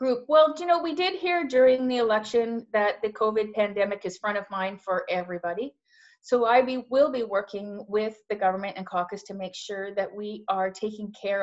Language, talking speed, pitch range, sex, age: English, 205 wpm, 190-245 Hz, female, 30-49